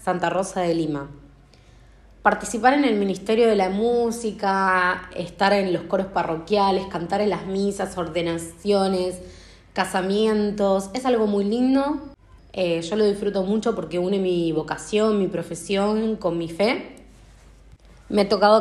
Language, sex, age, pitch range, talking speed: Spanish, female, 20-39, 175-220 Hz, 140 wpm